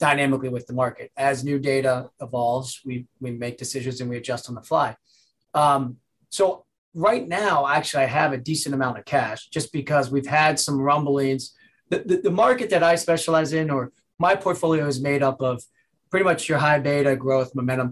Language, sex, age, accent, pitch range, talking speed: English, male, 30-49, American, 130-160 Hz, 195 wpm